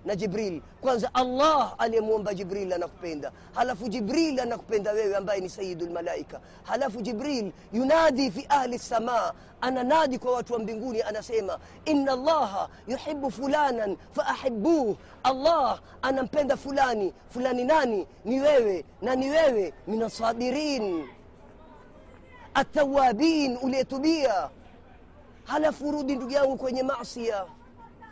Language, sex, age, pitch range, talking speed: Swahili, female, 30-49, 205-270 Hz, 115 wpm